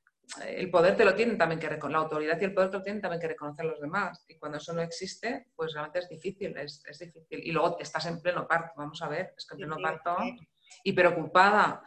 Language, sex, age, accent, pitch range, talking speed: Spanish, female, 30-49, Spanish, 160-205 Hz, 250 wpm